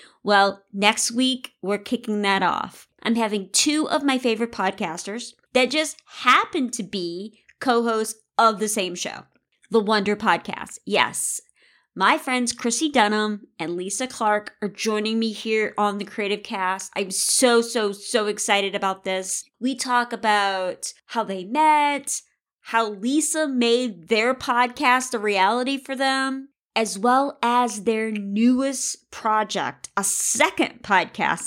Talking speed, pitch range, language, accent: 140 wpm, 205-255 Hz, English, American